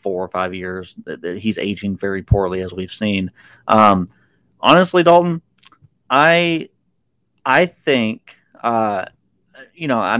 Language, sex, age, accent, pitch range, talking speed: English, male, 30-49, American, 100-115 Hz, 130 wpm